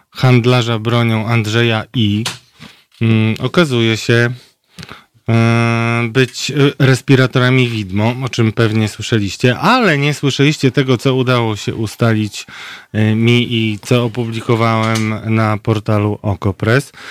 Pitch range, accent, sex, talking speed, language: 110-140 Hz, native, male, 100 wpm, Polish